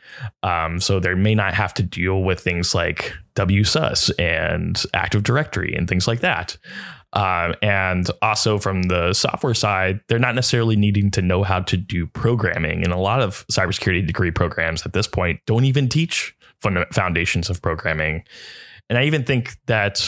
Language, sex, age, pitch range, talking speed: English, male, 20-39, 90-110 Hz, 170 wpm